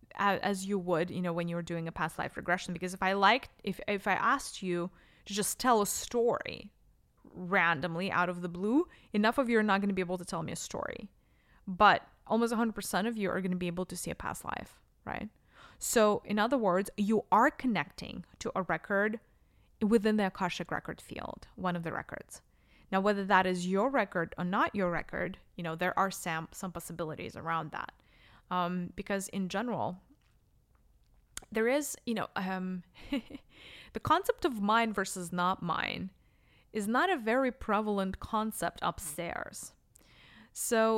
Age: 20-39